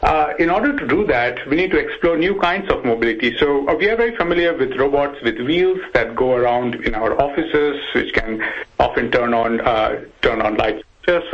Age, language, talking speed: 50-69, English, 205 wpm